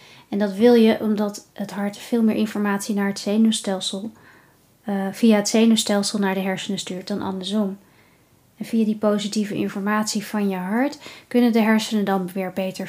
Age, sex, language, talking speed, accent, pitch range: 20-39, female, Dutch, 170 wpm, Dutch, 205-260 Hz